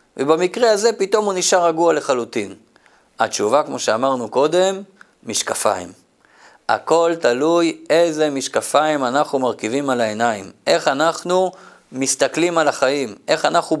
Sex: male